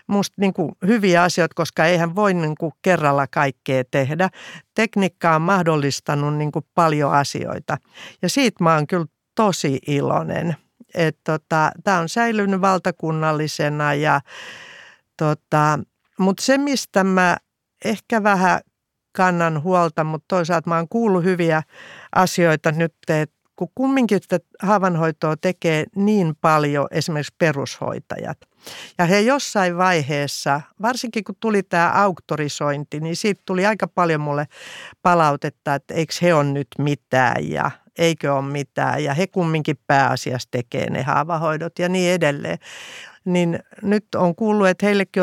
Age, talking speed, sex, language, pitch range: 50-69, 125 wpm, female, Finnish, 150-190 Hz